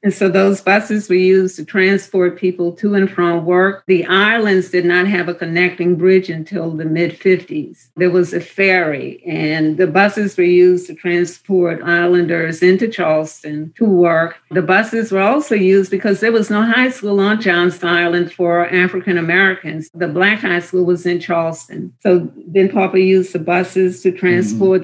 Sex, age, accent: female, 50-69, American